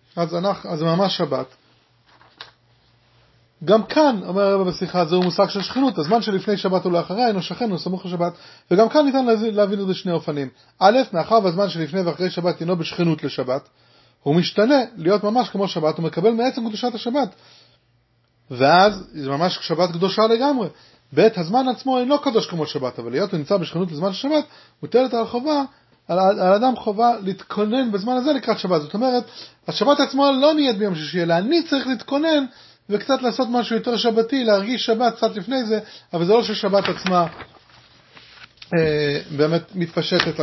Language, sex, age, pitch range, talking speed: English, male, 30-49, 165-230 Hz, 125 wpm